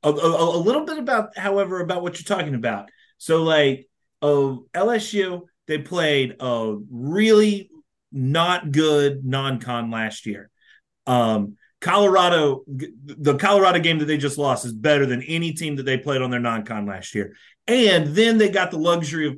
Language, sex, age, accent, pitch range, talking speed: English, male, 30-49, American, 125-175 Hz, 165 wpm